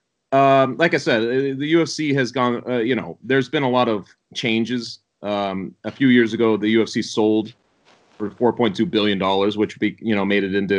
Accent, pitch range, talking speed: American, 110-130 Hz, 195 wpm